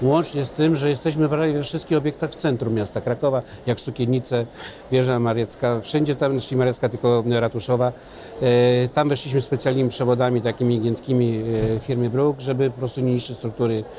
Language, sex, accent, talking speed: Polish, male, native, 150 wpm